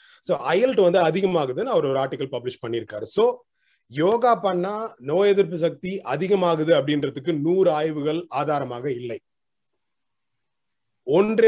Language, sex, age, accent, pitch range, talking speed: Tamil, male, 30-49, native, 145-200 Hz, 75 wpm